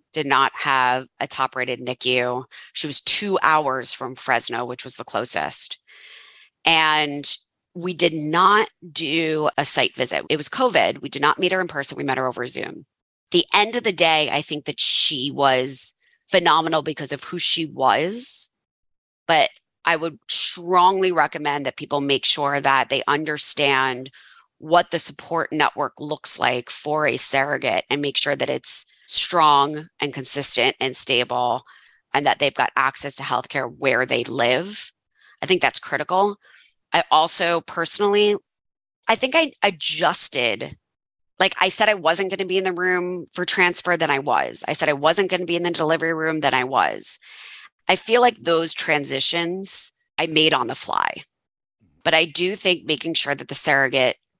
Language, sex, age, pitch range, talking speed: English, female, 20-39, 140-180 Hz, 170 wpm